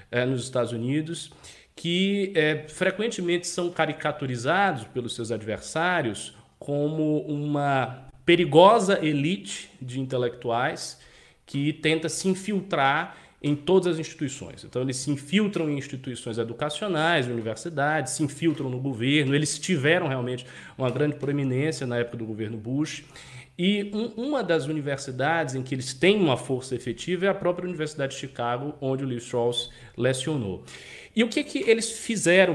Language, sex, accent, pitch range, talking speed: Portuguese, male, Brazilian, 130-175 Hz, 140 wpm